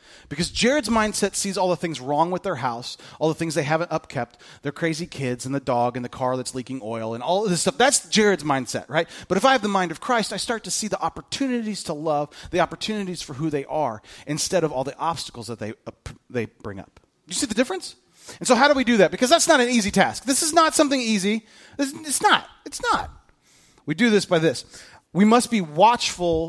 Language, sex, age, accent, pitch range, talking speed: English, male, 30-49, American, 155-235 Hz, 240 wpm